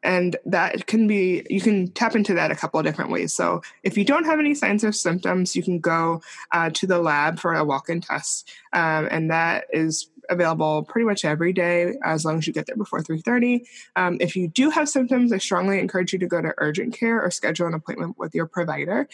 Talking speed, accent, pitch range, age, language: 230 wpm, American, 170-215 Hz, 20-39, English